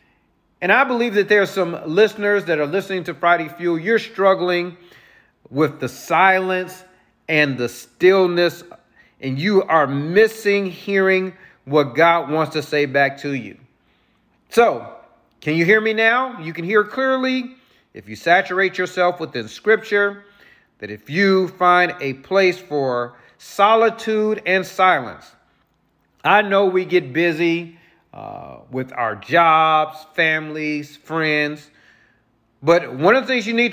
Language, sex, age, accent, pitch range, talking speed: English, male, 40-59, American, 155-205 Hz, 140 wpm